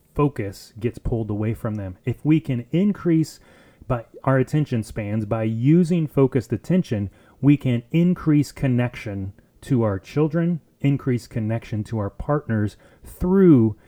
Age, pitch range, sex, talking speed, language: 30-49, 110-145 Hz, male, 135 wpm, English